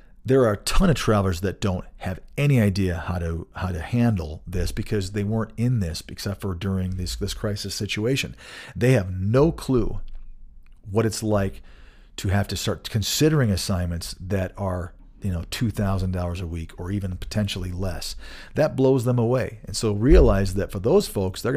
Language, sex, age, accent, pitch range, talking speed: English, male, 40-59, American, 90-110 Hz, 185 wpm